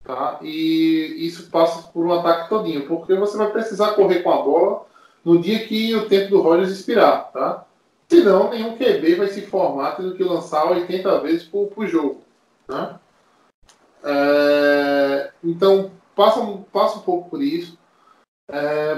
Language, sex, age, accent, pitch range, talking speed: Portuguese, male, 20-39, Brazilian, 145-195 Hz, 160 wpm